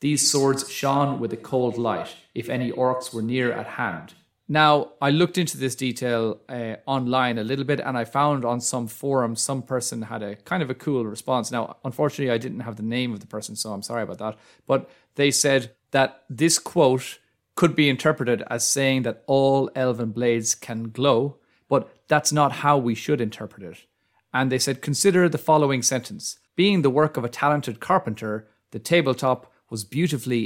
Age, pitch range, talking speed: 30-49, 115-140 Hz, 195 wpm